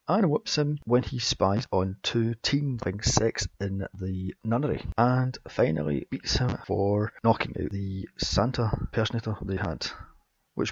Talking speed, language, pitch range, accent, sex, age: 145 wpm, English, 100-125 Hz, British, male, 30-49